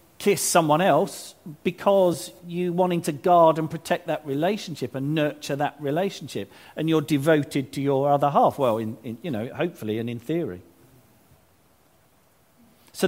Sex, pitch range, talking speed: male, 120-170 Hz, 150 wpm